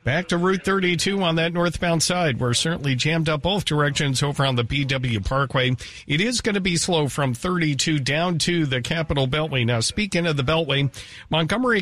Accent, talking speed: American, 195 wpm